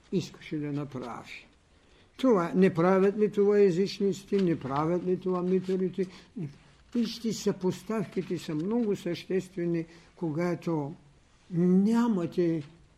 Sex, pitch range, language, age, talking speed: male, 140-200 Hz, Bulgarian, 60-79, 95 wpm